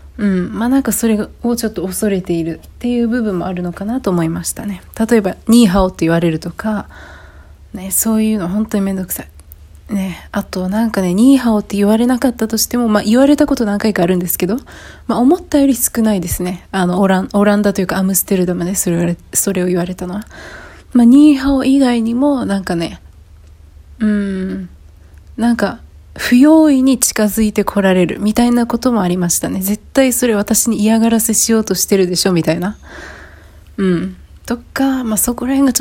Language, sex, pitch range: Japanese, female, 180-240 Hz